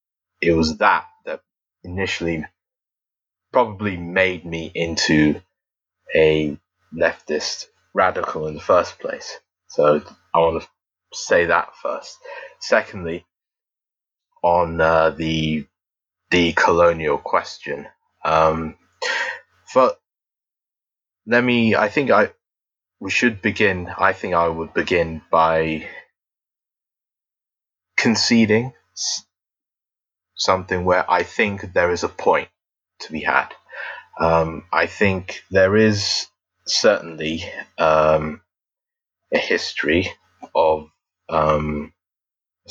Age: 20-39